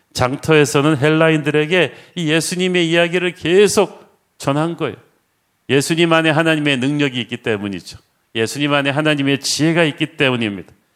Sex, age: male, 40-59